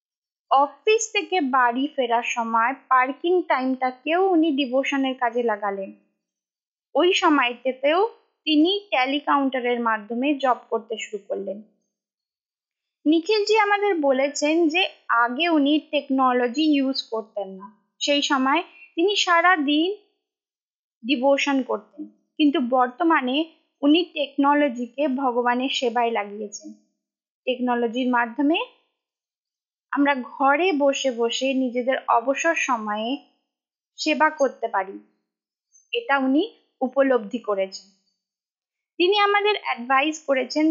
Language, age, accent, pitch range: Bengali, 20-39, native, 245-320 Hz